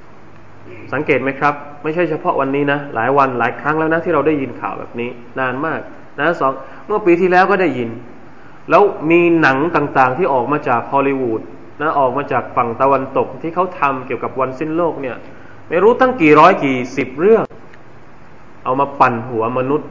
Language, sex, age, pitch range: Thai, male, 20-39, 135-215 Hz